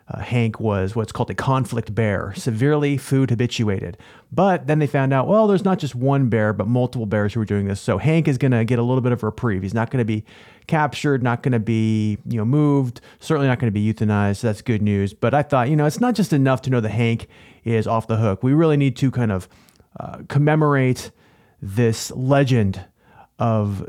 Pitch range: 105-130 Hz